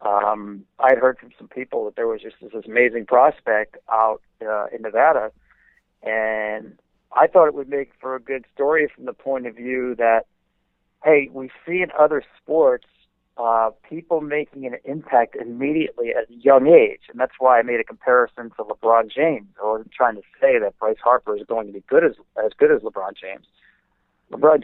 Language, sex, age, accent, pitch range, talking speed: English, male, 40-59, American, 115-180 Hz, 195 wpm